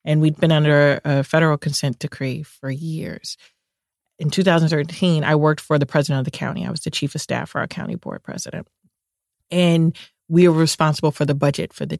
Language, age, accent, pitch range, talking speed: English, 30-49, American, 140-170 Hz, 200 wpm